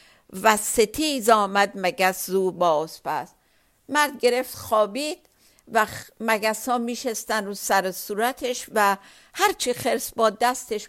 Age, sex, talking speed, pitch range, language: 60-79, female, 120 wpm, 185-235 Hz, Persian